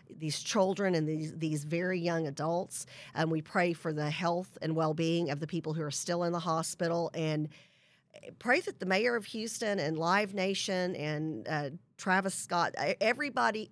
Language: English